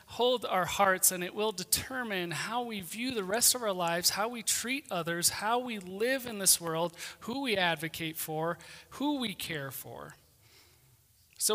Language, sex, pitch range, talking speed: English, male, 165-225 Hz, 175 wpm